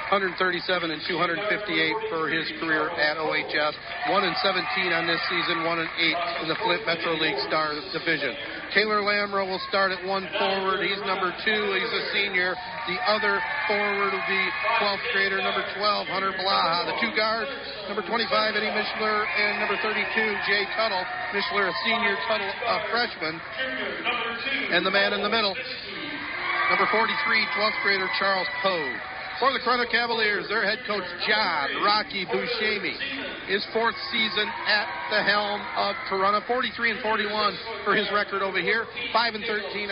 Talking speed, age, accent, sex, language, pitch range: 160 wpm, 40-59, American, male, English, 190-220 Hz